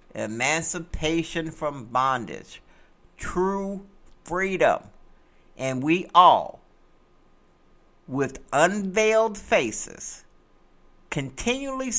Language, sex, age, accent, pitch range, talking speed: English, male, 60-79, American, 125-195 Hz, 60 wpm